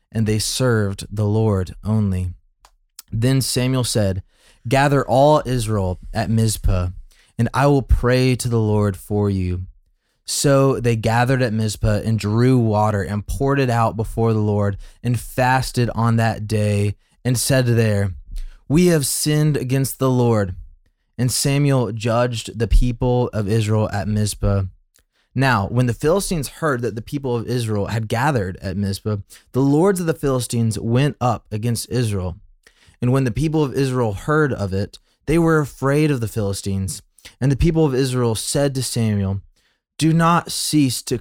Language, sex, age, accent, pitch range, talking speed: English, male, 20-39, American, 105-130 Hz, 160 wpm